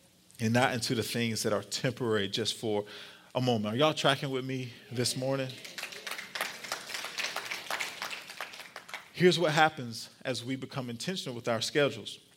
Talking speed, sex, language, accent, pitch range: 140 wpm, male, English, American, 120-145 Hz